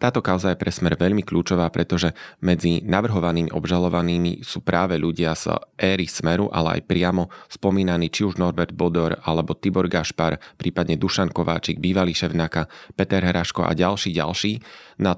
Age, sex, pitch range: 30-49, male, 85-95 Hz